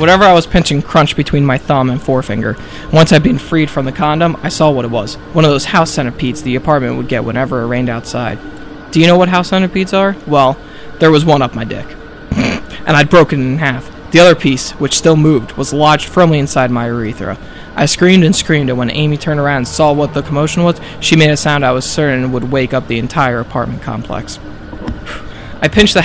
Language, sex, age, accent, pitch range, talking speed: English, male, 20-39, American, 130-155 Hz, 230 wpm